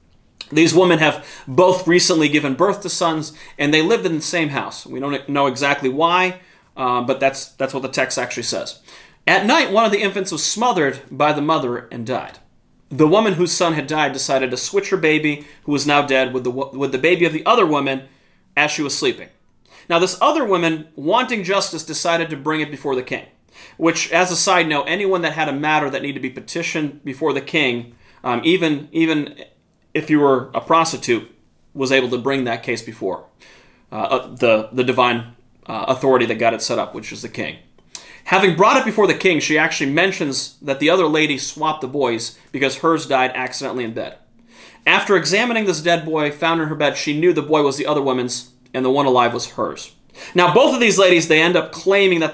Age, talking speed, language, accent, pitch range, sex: 30-49, 215 wpm, English, American, 135-170 Hz, male